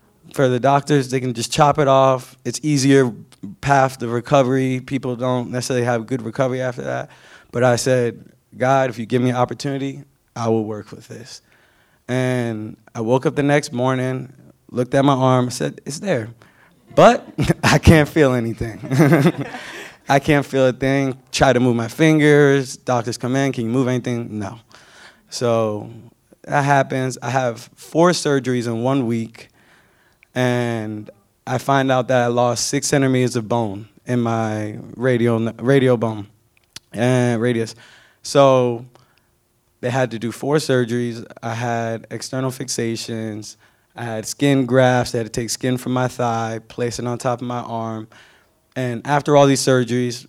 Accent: American